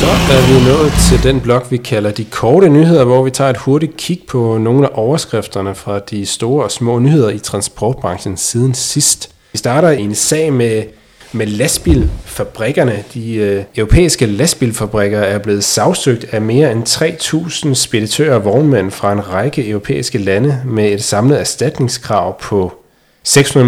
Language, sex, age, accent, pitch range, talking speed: Danish, male, 30-49, native, 100-130 Hz, 165 wpm